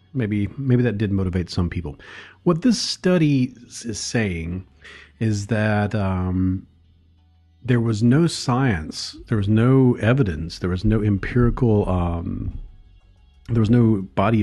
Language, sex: English, male